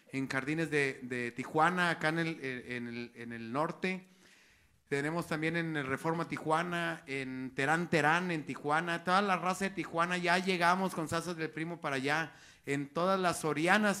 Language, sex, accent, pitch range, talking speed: Spanish, male, Mexican, 150-190 Hz, 175 wpm